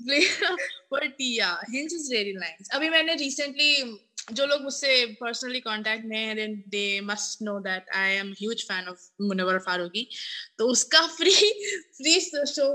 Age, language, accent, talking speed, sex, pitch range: 20-39, Hindi, native, 125 wpm, female, 195-275 Hz